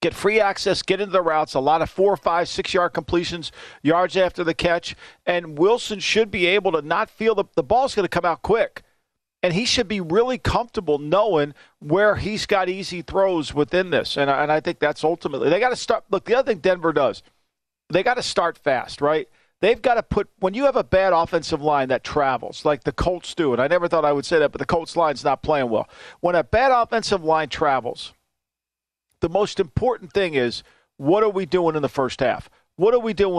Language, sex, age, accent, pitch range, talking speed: English, male, 50-69, American, 165-205 Hz, 225 wpm